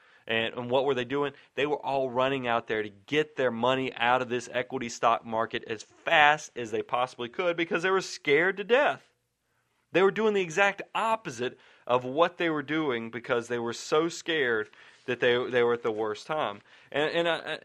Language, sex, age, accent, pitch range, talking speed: English, male, 30-49, American, 120-170 Hz, 205 wpm